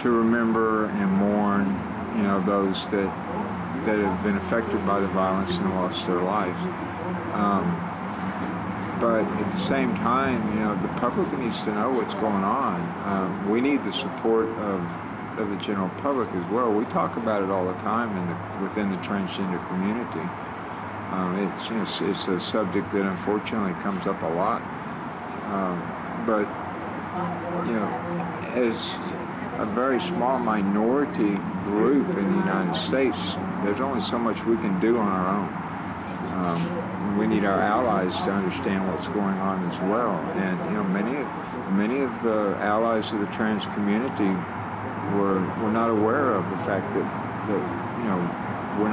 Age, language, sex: 50-69, English, male